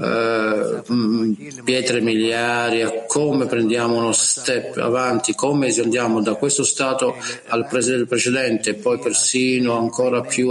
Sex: male